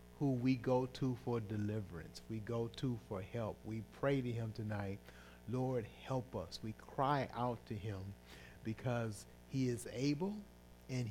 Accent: American